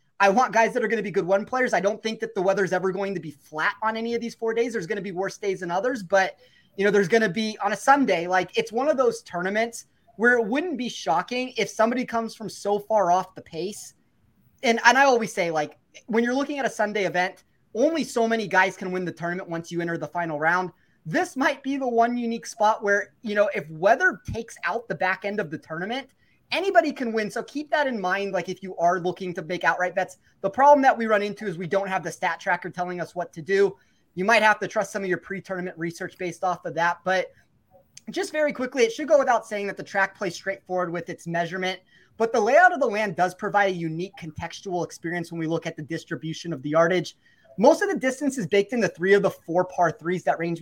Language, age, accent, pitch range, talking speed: English, 20-39, American, 180-230 Hz, 255 wpm